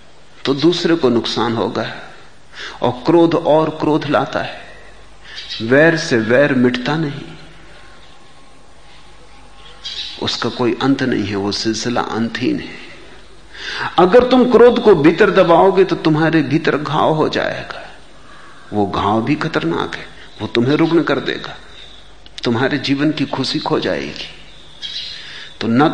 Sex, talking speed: male, 125 wpm